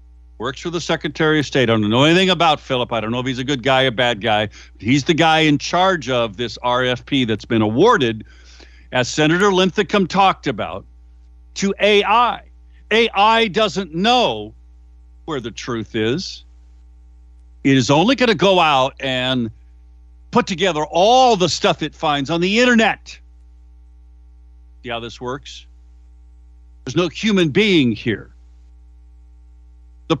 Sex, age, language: male, 50-69, English